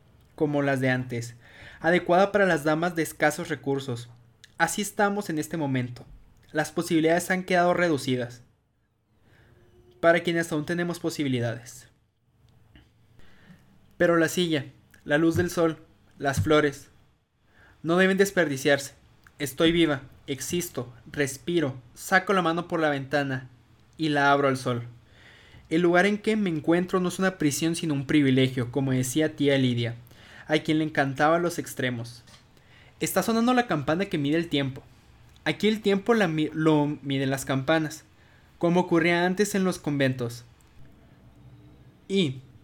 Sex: male